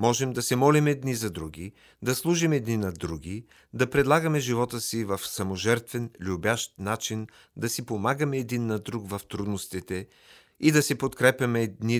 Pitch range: 95-125 Hz